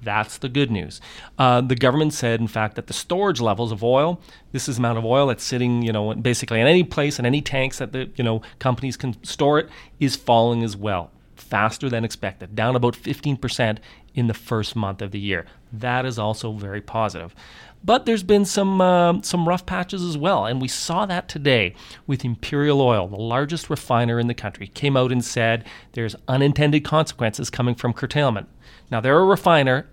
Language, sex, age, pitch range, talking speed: English, male, 30-49, 110-140 Hz, 205 wpm